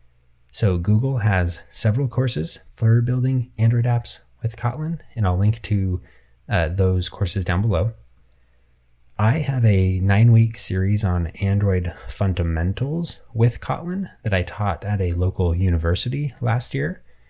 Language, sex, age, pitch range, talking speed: English, male, 20-39, 90-110 Hz, 140 wpm